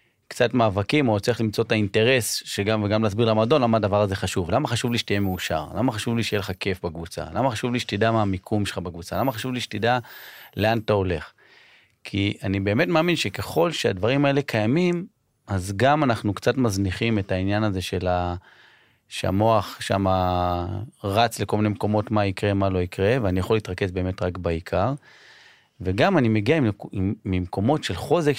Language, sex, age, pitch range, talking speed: Hebrew, male, 30-49, 95-120 Hz, 175 wpm